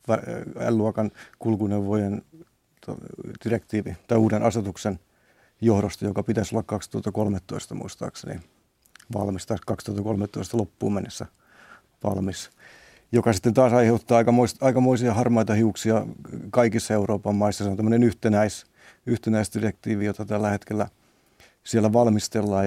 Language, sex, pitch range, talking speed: Finnish, male, 100-115 Hz, 100 wpm